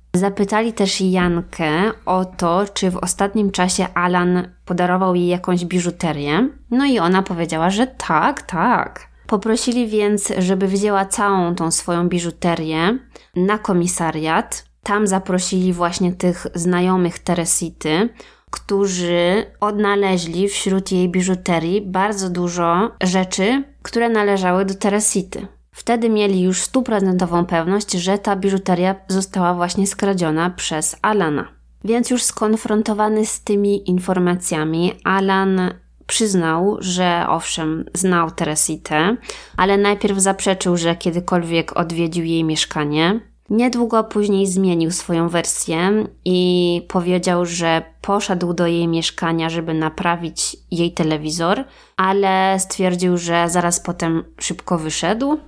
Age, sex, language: 20-39, female, Polish